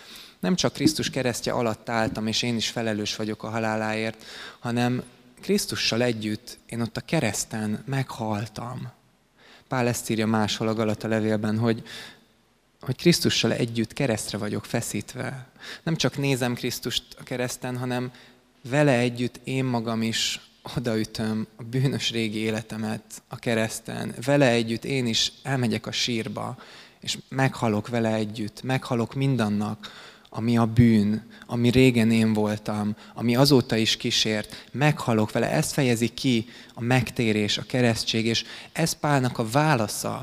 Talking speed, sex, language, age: 135 wpm, male, Hungarian, 20-39